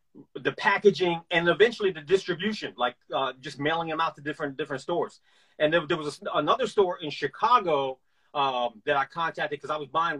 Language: English